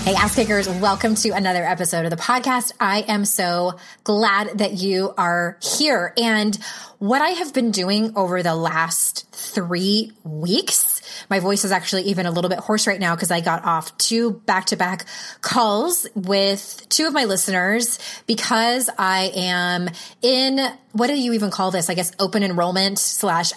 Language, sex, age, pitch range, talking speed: English, female, 20-39, 180-230 Hz, 170 wpm